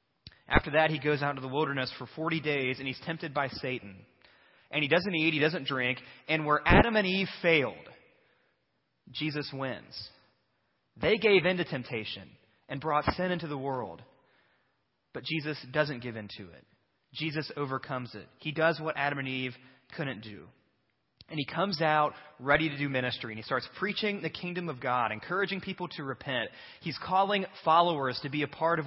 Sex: male